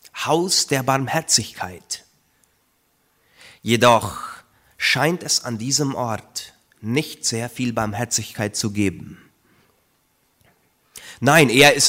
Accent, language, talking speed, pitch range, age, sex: German, German, 90 wpm, 105-140 Hz, 30-49, male